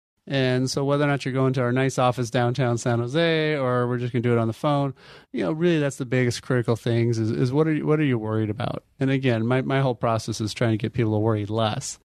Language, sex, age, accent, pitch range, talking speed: English, male, 30-49, American, 120-145 Hz, 275 wpm